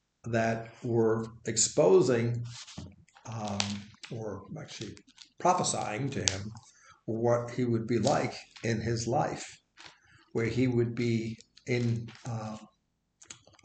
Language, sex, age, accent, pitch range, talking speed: English, male, 50-69, American, 110-125 Hz, 100 wpm